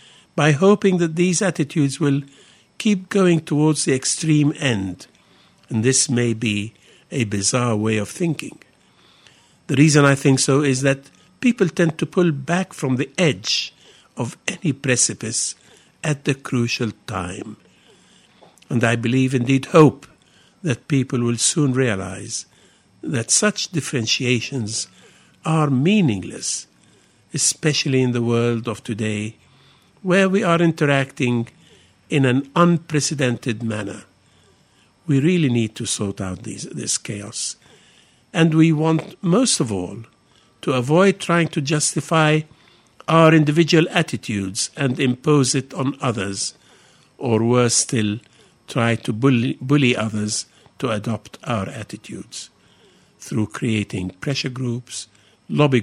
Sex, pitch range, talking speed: male, 120-160 Hz, 125 wpm